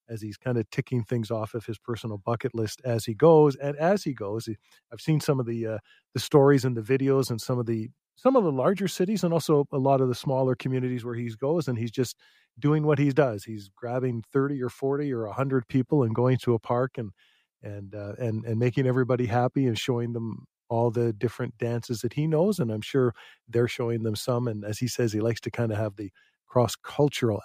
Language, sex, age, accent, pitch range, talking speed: English, male, 40-59, American, 110-135 Hz, 235 wpm